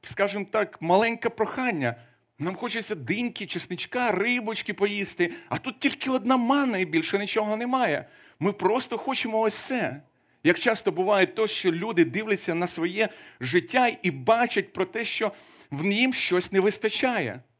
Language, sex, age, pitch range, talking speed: Ukrainian, male, 40-59, 170-220 Hz, 150 wpm